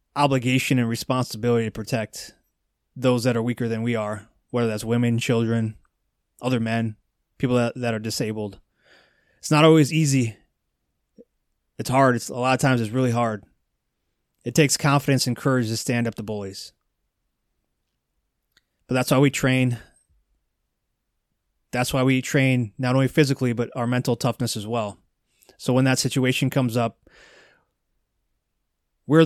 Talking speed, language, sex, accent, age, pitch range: 150 wpm, English, male, American, 20-39, 110-130 Hz